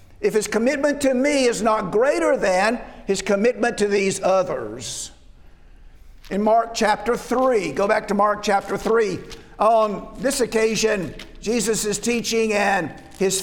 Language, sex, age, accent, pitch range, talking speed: English, male, 50-69, American, 205-250 Hz, 145 wpm